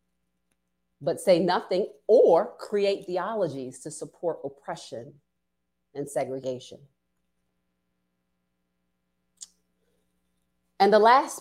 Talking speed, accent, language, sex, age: 75 wpm, American, English, female, 40-59